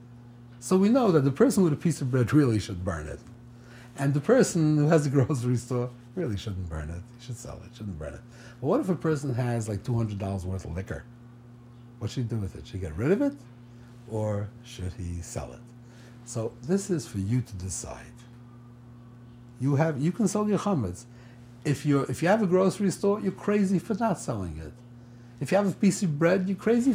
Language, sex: English, male